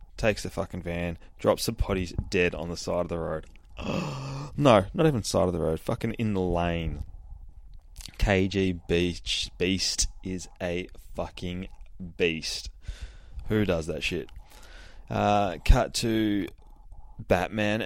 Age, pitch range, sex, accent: 20-39, 80-105 Hz, male, Australian